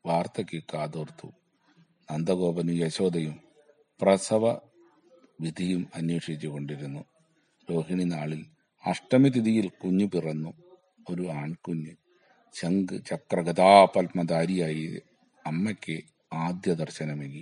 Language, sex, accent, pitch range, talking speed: Malayalam, male, native, 80-115 Hz, 60 wpm